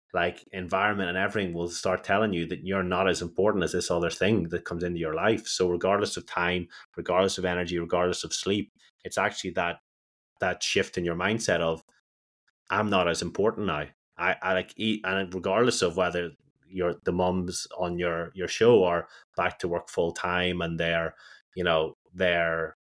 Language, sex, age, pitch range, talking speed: English, male, 30-49, 85-95 Hz, 190 wpm